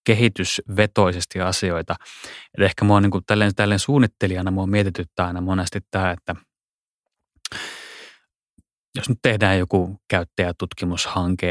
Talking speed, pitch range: 95 wpm, 90-105 Hz